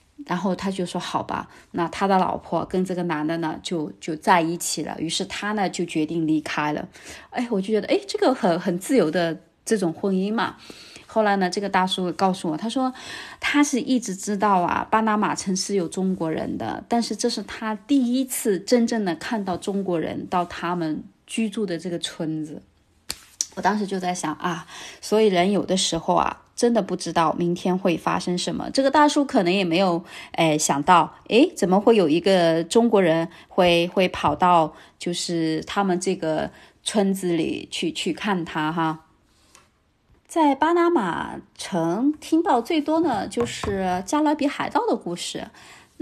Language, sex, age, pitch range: Chinese, female, 20-39, 170-230 Hz